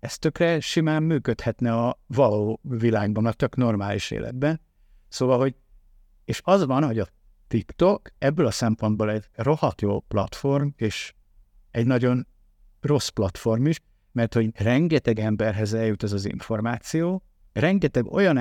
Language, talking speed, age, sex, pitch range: Hungarian, 135 wpm, 60-79, male, 105-125 Hz